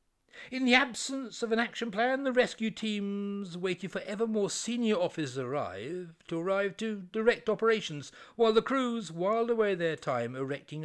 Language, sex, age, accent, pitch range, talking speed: English, male, 60-79, British, 155-220 Hz, 160 wpm